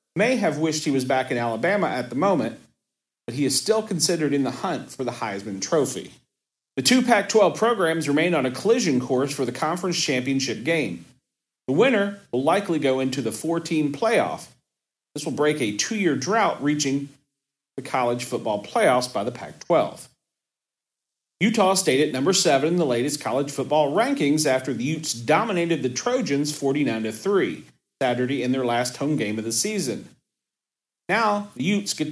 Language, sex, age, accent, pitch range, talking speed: English, male, 40-59, American, 130-185 Hz, 170 wpm